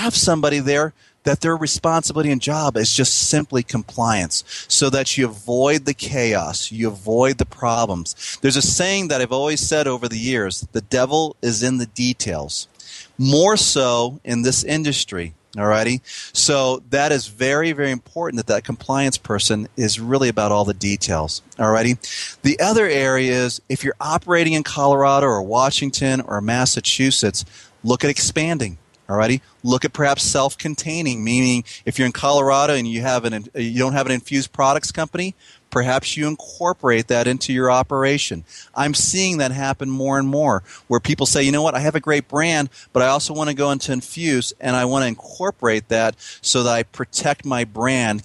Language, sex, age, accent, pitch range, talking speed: English, male, 30-49, American, 115-145 Hz, 180 wpm